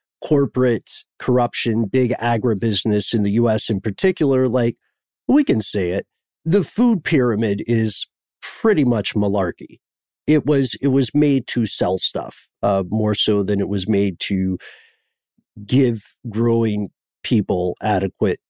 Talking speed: 135 wpm